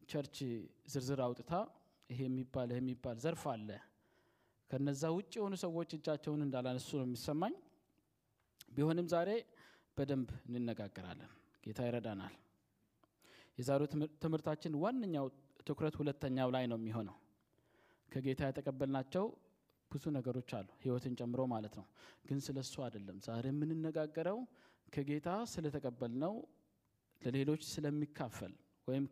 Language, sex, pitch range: Amharic, male, 125-155 Hz